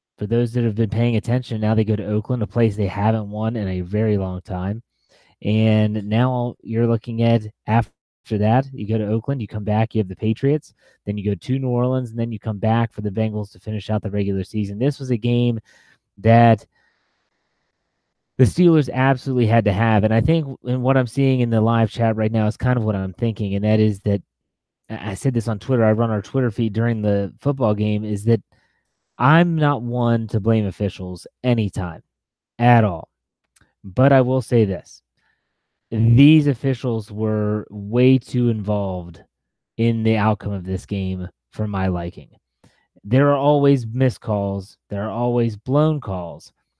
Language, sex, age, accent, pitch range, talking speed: English, male, 30-49, American, 105-125 Hz, 190 wpm